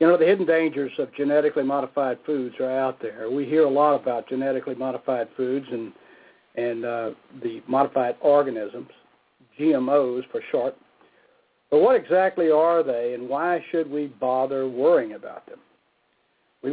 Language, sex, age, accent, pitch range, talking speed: English, male, 60-79, American, 135-195 Hz, 155 wpm